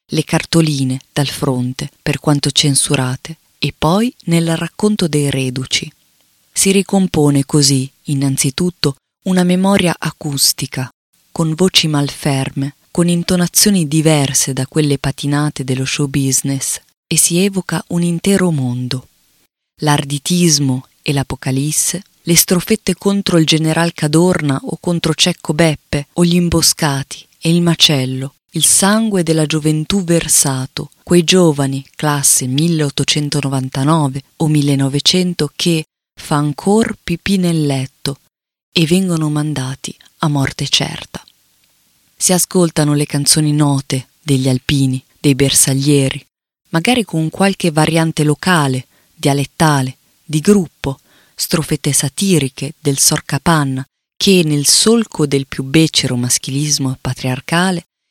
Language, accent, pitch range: Italian, native, 140-170 Hz